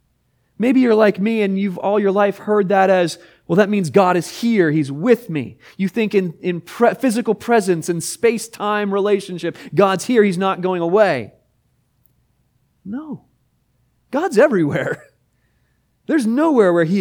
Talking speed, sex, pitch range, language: 155 wpm, male, 130-190 Hz, English